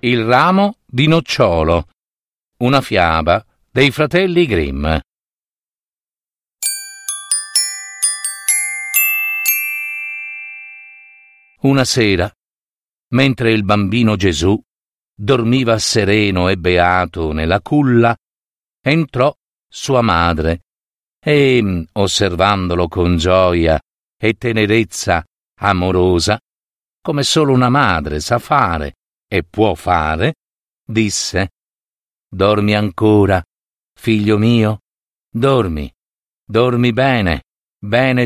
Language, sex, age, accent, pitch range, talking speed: Italian, male, 50-69, native, 90-135 Hz, 75 wpm